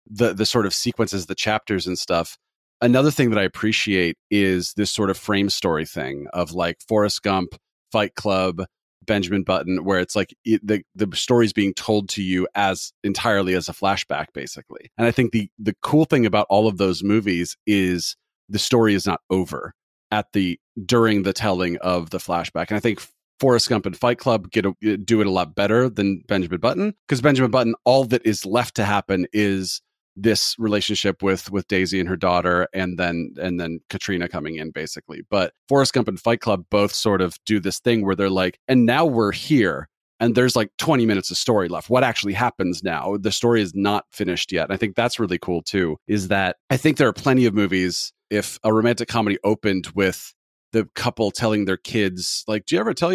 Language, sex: English, male